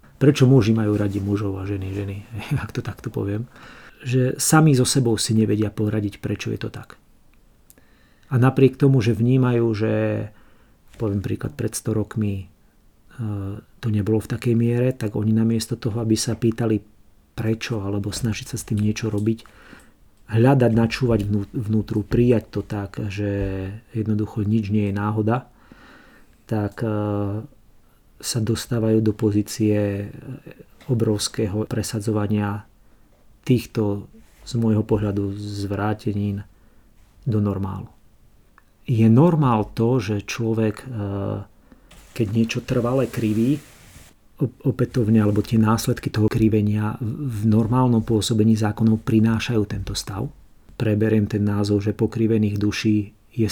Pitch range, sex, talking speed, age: 105-115 Hz, male, 125 wpm, 40-59